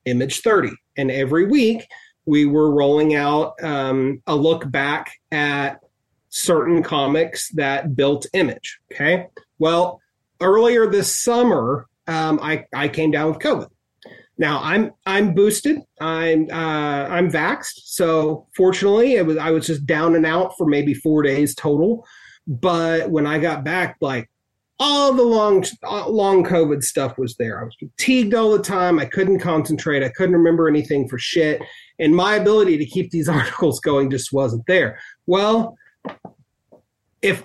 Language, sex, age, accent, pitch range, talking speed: English, male, 30-49, American, 145-200 Hz, 155 wpm